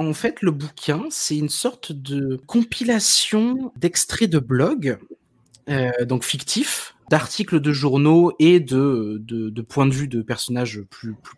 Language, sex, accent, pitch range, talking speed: French, male, French, 120-185 Hz, 155 wpm